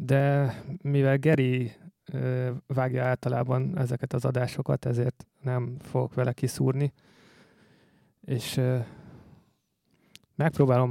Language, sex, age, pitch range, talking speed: Hungarian, male, 30-49, 125-155 Hz, 85 wpm